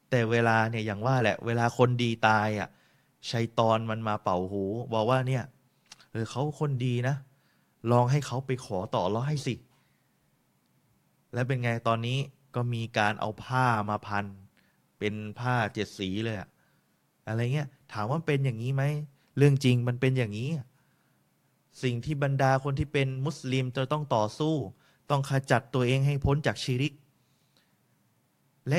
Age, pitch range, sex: 20-39, 115-135 Hz, male